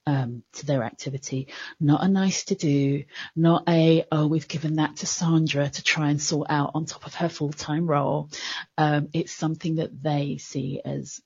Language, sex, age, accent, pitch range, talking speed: English, female, 30-49, British, 145-165 Hz, 185 wpm